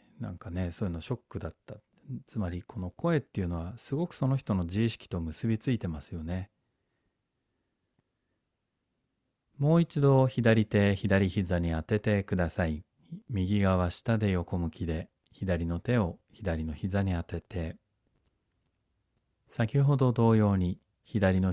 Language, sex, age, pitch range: Japanese, male, 40-59, 90-125 Hz